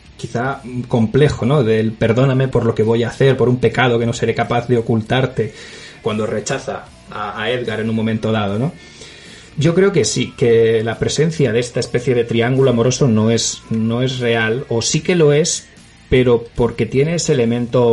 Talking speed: 195 wpm